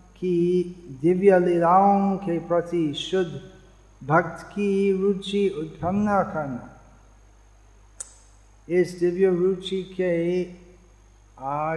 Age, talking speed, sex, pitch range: 50-69, 80 wpm, male, 135-180 Hz